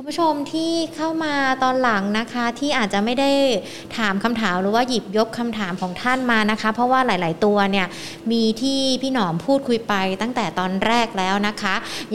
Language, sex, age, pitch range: Thai, female, 20-39, 195-250 Hz